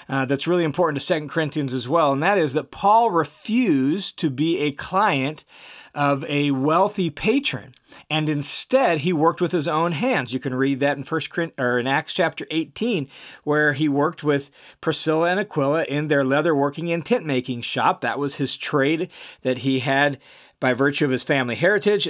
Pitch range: 140-180 Hz